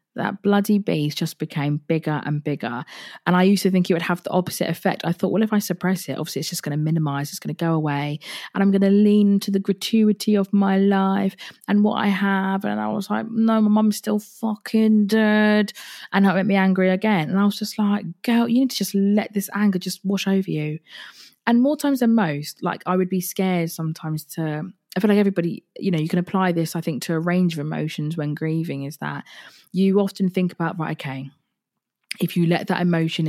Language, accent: English, British